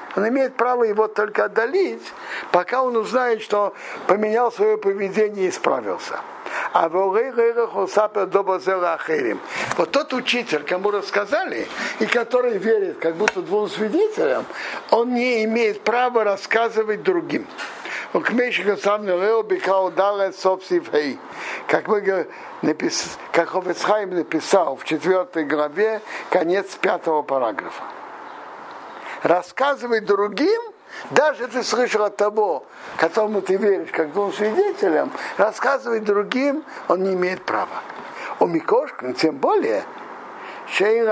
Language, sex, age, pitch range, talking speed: Russian, male, 60-79, 180-305 Hz, 100 wpm